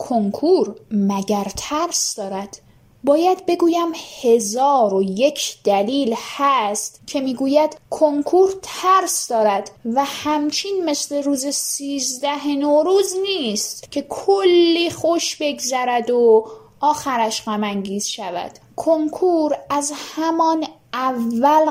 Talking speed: 95 wpm